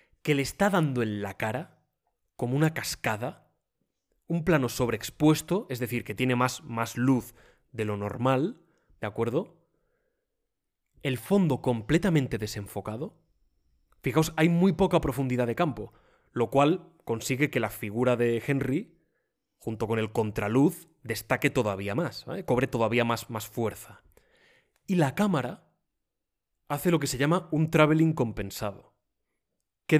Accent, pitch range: Spanish, 120-165 Hz